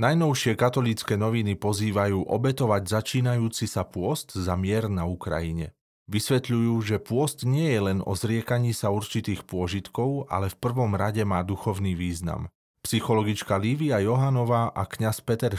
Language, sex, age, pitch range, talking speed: Slovak, male, 30-49, 95-125 Hz, 140 wpm